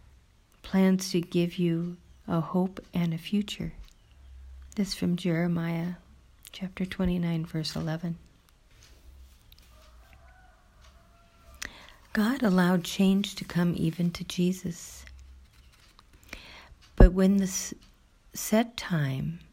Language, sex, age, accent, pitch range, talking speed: English, female, 50-69, American, 155-190 Hz, 90 wpm